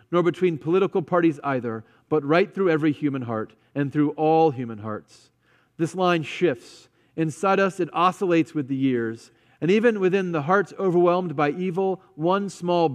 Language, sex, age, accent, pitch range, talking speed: English, male, 40-59, American, 150-195 Hz, 165 wpm